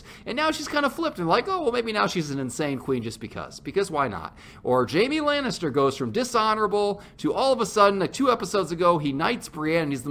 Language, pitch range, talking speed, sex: English, 160-265 Hz, 250 wpm, male